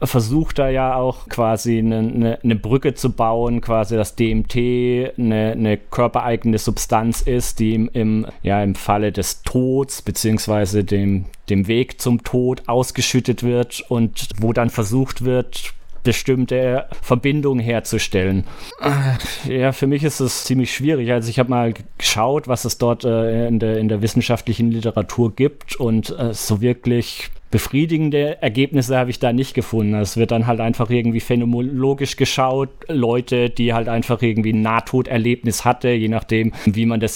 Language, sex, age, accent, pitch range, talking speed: German, male, 30-49, German, 110-125 Hz, 155 wpm